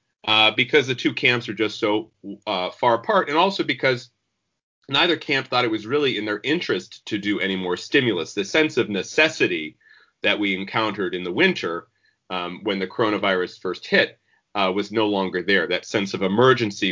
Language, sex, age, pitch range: English, male, 30-49, 105-170 Hz